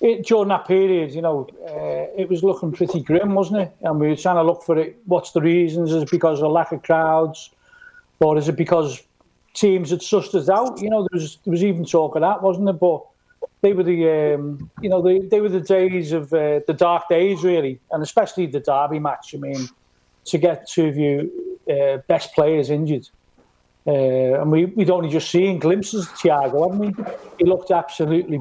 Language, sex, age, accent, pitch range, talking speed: English, male, 40-59, British, 155-195 Hz, 215 wpm